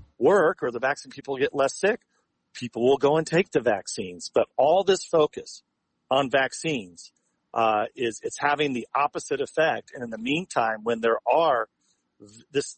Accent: American